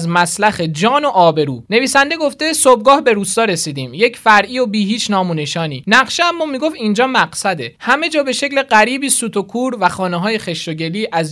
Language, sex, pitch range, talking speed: Persian, male, 185-245 Hz, 175 wpm